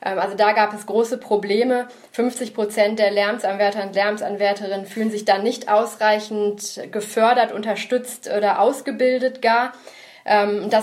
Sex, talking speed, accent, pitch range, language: female, 130 wpm, German, 195-225 Hz, German